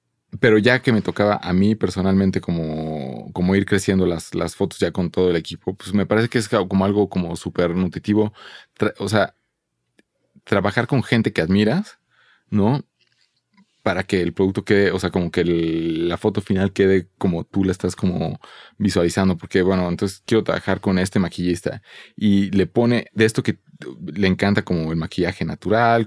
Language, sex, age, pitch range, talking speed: Spanish, male, 30-49, 90-110 Hz, 180 wpm